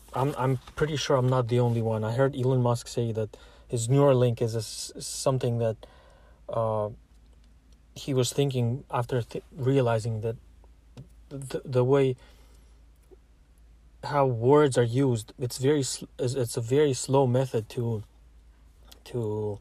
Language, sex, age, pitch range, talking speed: English, male, 20-39, 115-140 Hz, 140 wpm